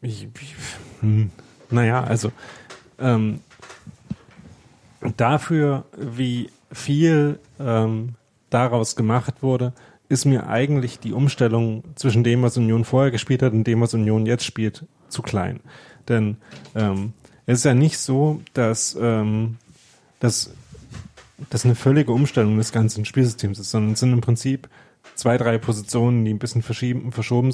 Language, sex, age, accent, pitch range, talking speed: German, male, 30-49, German, 115-130 Hz, 135 wpm